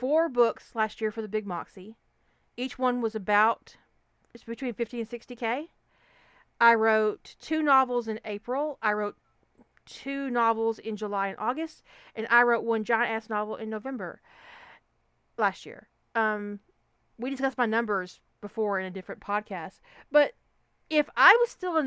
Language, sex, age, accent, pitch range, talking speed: English, female, 40-59, American, 210-255 Hz, 160 wpm